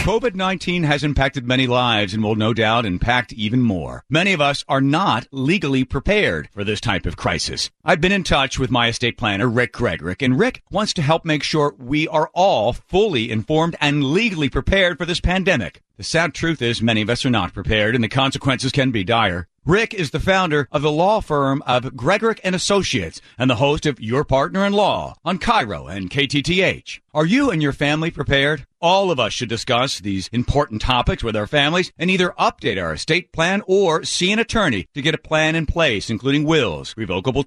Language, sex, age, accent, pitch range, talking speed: English, male, 50-69, American, 120-170 Hz, 205 wpm